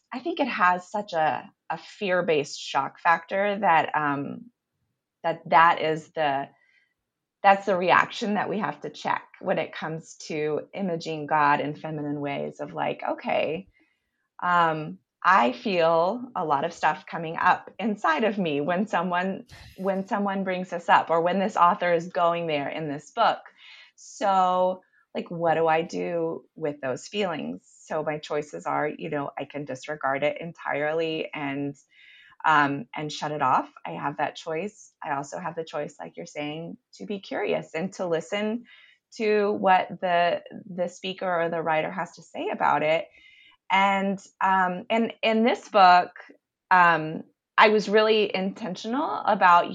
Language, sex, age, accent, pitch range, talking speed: English, female, 30-49, American, 155-205 Hz, 160 wpm